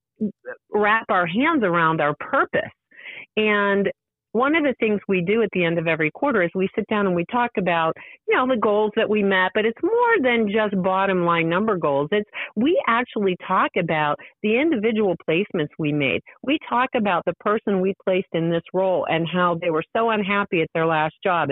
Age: 50-69